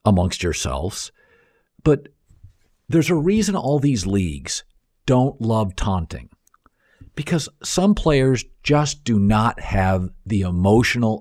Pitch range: 105-170 Hz